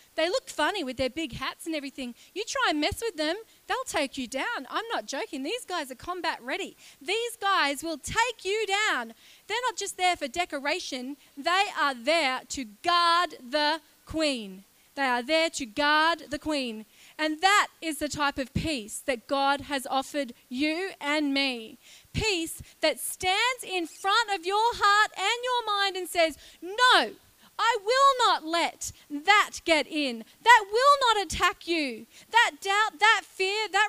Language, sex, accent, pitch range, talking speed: English, female, Australian, 285-410 Hz, 175 wpm